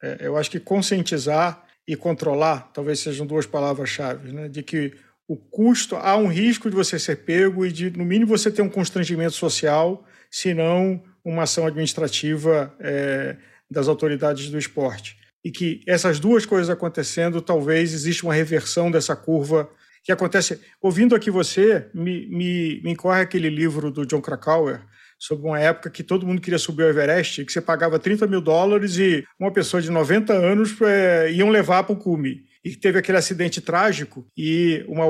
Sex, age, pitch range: male, 50-69, 155-195 Hz